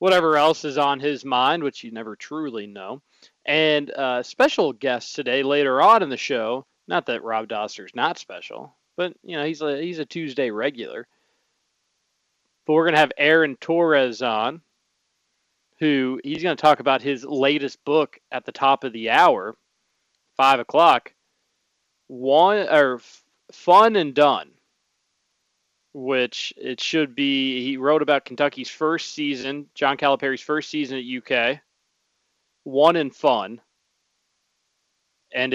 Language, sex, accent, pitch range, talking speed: English, male, American, 120-150 Hz, 145 wpm